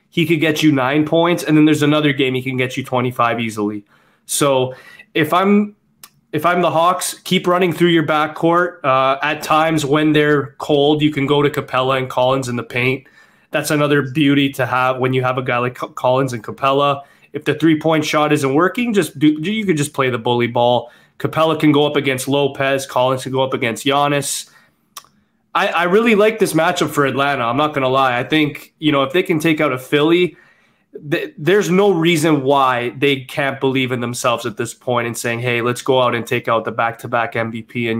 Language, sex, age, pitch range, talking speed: English, male, 20-39, 125-160 Hz, 215 wpm